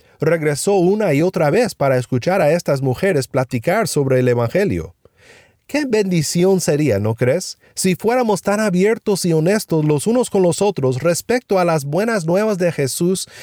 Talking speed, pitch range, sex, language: 165 wpm, 135-200 Hz, male, Spanish